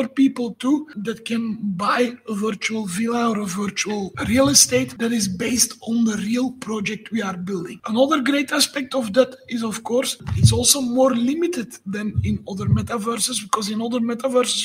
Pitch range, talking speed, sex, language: 220-260 Hz, 175 wpm, male, English